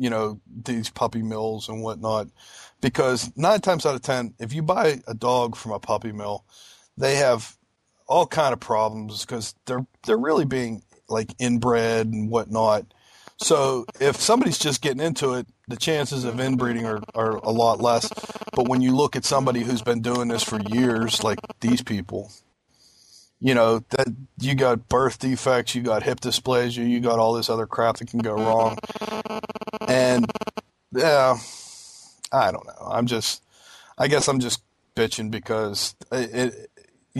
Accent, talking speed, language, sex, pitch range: American, 170 wpm, English, male, 110-130 Hz